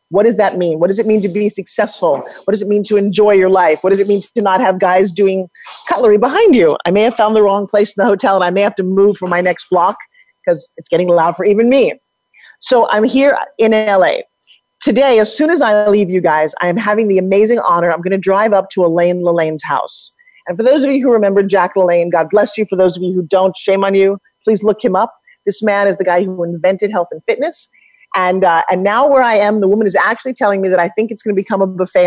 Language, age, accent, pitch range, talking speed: English, 40-59, American, 180-215 Hz, 265 wpm